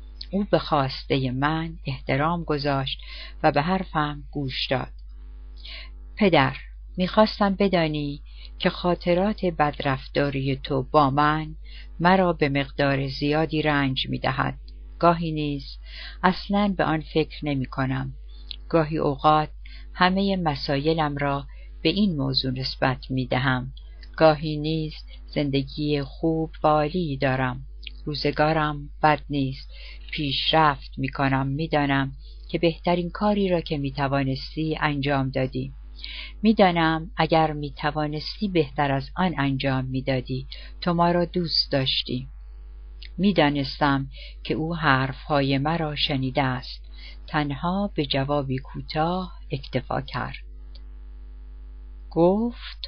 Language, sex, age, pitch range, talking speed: Persian, female, 60-79, 130-160 Hz, 105 wpm